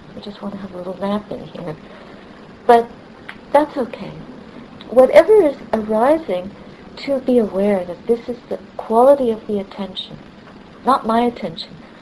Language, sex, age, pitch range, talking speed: English, female, 60-79, 200-245 Hz, 150 wpm